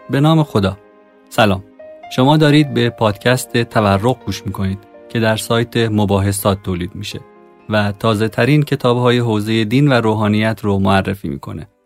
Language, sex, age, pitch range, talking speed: Persian, male, 30-49, 105-130 Hz, 140 wpm